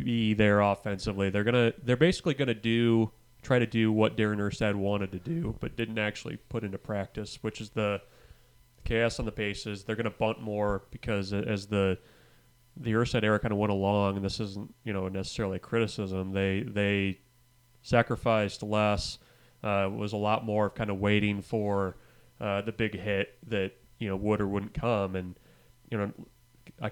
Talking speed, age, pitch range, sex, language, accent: 185 wpm, 30-49, 100-115 Hz, male, English, American